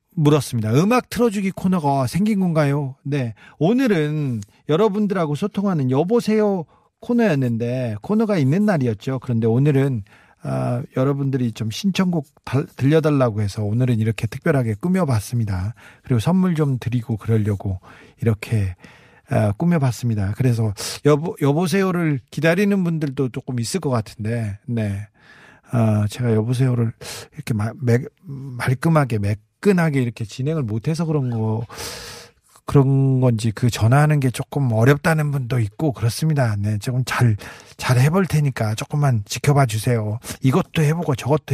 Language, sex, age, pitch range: Korean, male, 40-59, 120-155 Hz